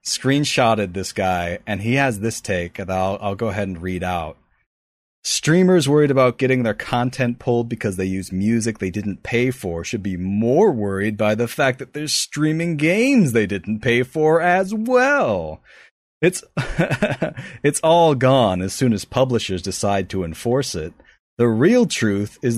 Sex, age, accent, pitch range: male, 30-49, American, 100-135 Hz